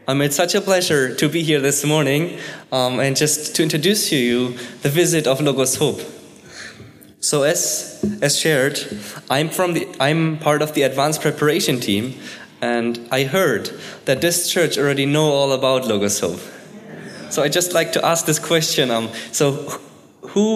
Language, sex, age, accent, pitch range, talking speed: English, male, 20-39, German, 125-160 Hz, 175 wpm